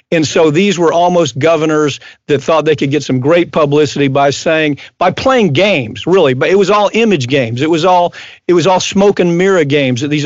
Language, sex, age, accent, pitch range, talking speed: English, male, 50-69, American, 150-195 Hz, 220 wpm